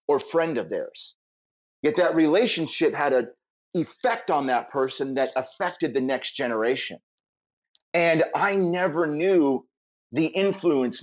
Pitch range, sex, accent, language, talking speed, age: 125-180 Hz, male, American, English, 130 wpm, 30-49